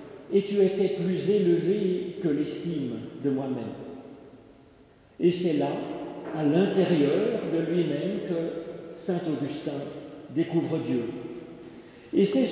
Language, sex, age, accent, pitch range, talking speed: French, male, 50-69, French, 155-195 Hz, 125 wpm